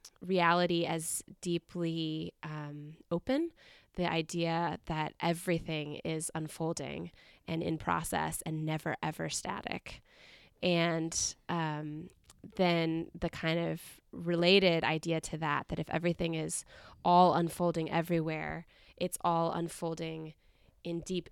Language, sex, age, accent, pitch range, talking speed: English, female, 20-39, American, 160-175 Hz, 115 wpm